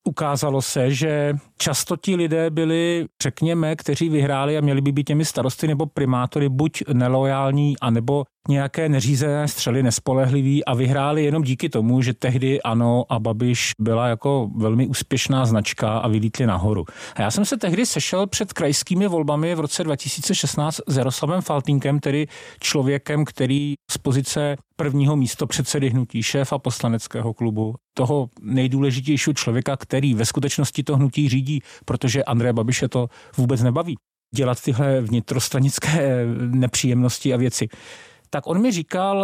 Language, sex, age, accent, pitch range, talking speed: Czech, male, 40-59, native, 130-160 Hz, 145 wpm